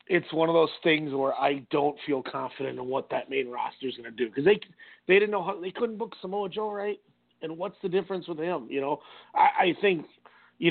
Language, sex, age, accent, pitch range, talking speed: English, male, 40-59, American, 130-170 Hz, 240 wpm